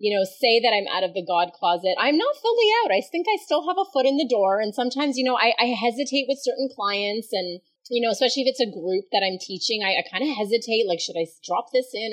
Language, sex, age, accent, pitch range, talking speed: English, female, 30-49, American, 180-260 Hz, 270 wpm